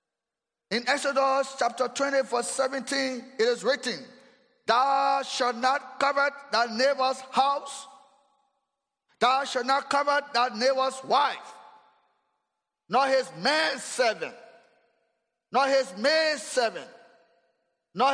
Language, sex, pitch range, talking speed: English, male, 250-295 Hz, 105 wpm